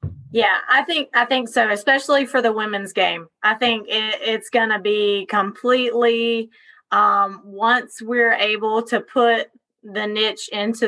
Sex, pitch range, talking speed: female, 205-235 Hz, 155 wpm